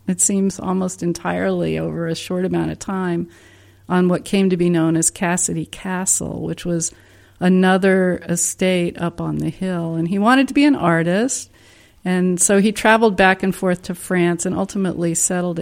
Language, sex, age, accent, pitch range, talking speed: English, female, 50-69, American, 165-195 Hz, 175 wpm